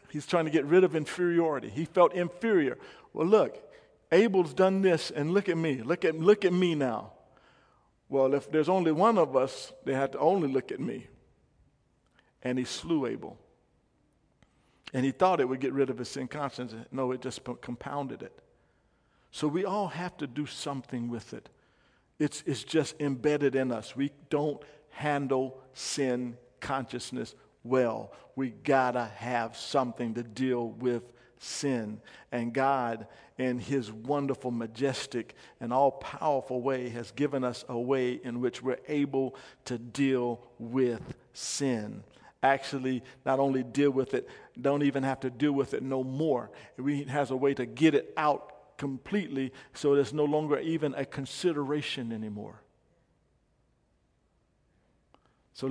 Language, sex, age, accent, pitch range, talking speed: English, male, 50-69, American, 125-150 Hz, 155 wpm